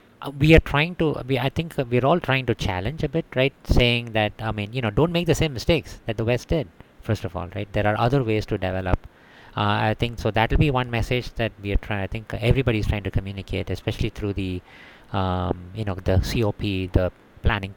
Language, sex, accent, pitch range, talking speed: English, male, Indian, 95-120 Hz, 235 wpm